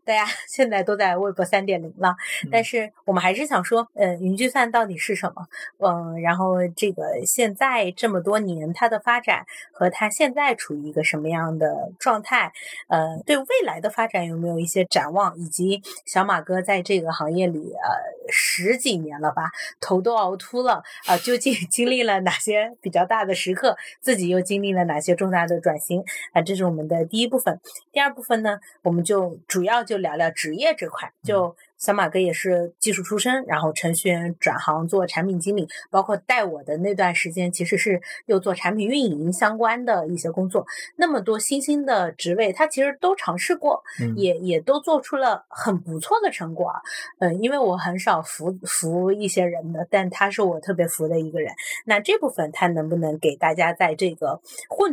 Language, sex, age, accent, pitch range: Chinese, female, 30-49, native, 175-230 Hz